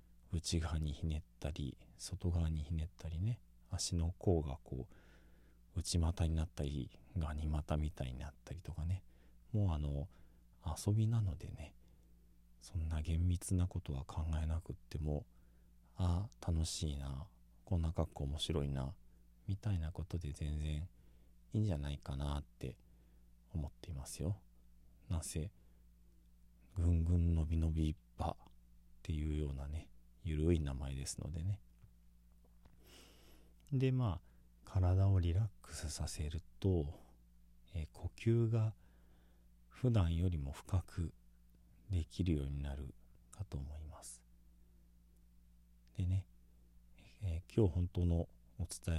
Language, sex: Japanese, male